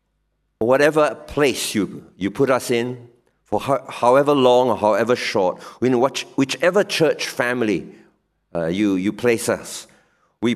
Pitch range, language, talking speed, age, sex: 105-145 Hz, English, 135 wpm, 50-69, male